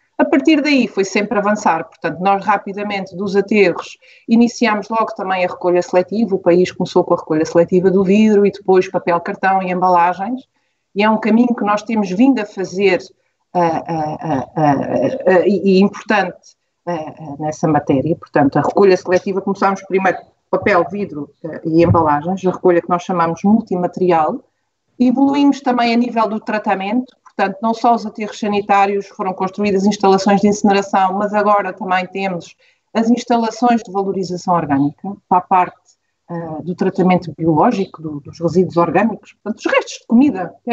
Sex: female